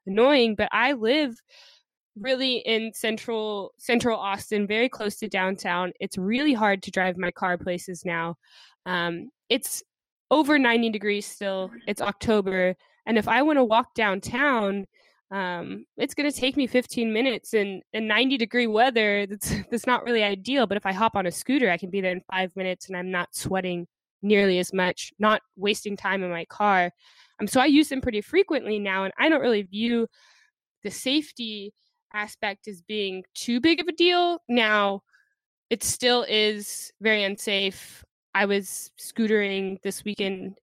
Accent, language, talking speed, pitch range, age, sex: American, English, 170 wpm, 190-235 Hz, 10-29, female